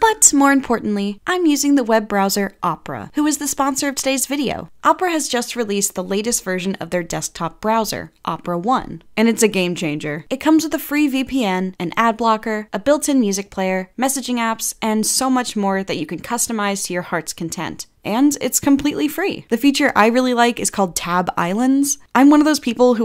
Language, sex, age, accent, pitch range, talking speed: English, female, 10-29, American, 185-270 Hz, 210 wpm